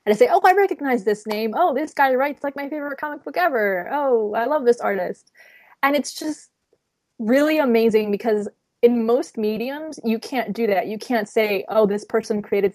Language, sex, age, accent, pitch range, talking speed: English, female, 20-39, American, 200-265 Hz, 200 wpm